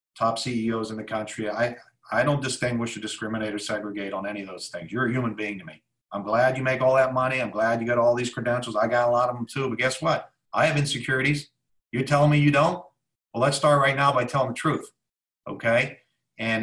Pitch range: 110-135 Hz